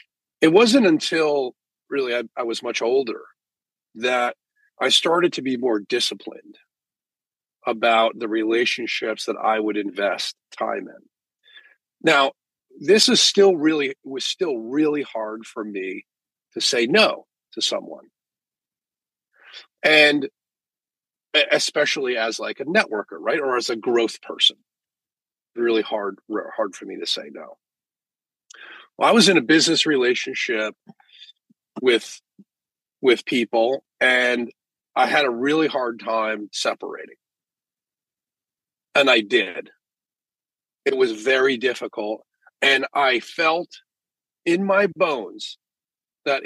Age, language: 40-59, English